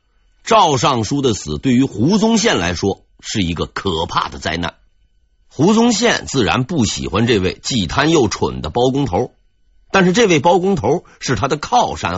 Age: 50-69